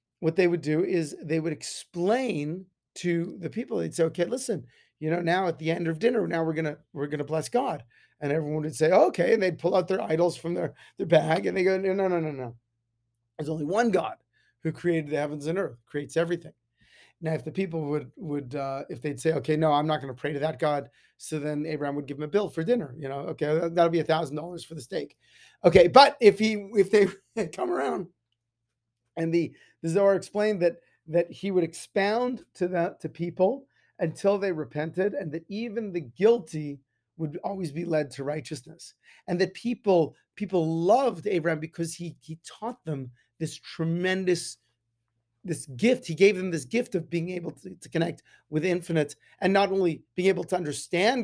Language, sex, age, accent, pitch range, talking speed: English, male, 30-49, American, 150-185 Hz, 210 wpm